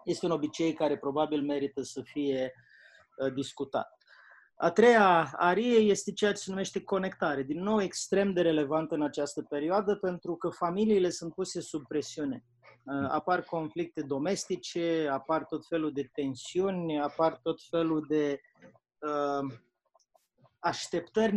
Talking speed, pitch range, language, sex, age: 140 wpm, 145-175 Hz, Romanian, male, 30-49